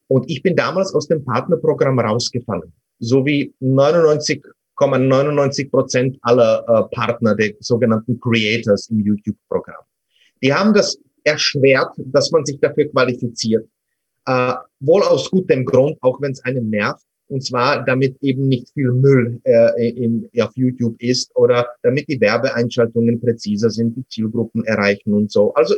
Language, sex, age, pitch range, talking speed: German, male, 30-49, 115-155 Hz, 150 wpm